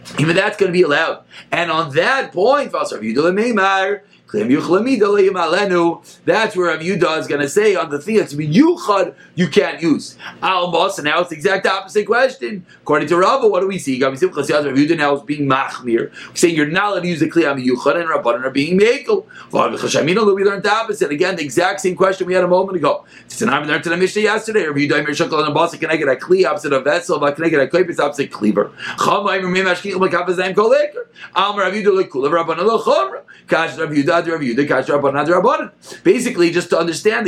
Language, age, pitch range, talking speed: English, 40-59, 170-250 Hz, 140 wpm